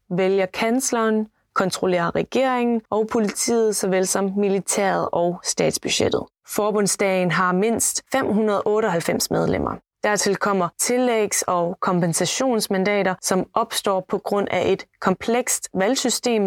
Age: 20-39